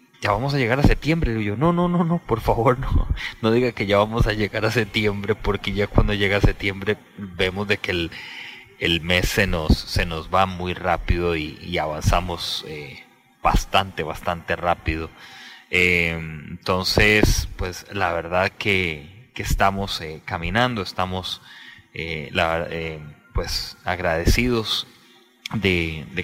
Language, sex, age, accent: English, male, 30-49, Mexican